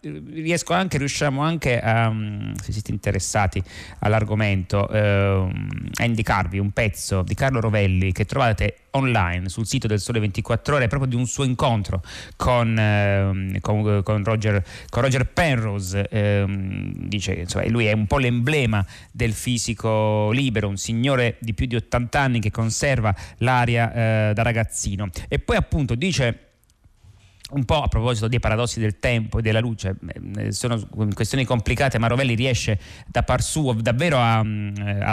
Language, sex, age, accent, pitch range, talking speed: Italian, male, 30-49, native, 105-125 Hz, 155 wpm